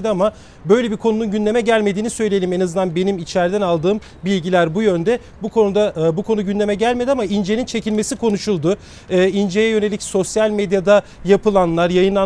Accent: native